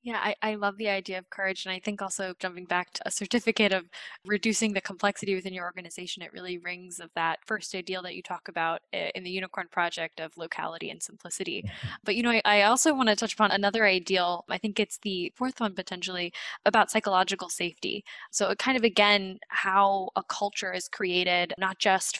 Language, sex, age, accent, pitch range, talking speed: English, female, 10-29, American, 180-210 Hz, 210 wpm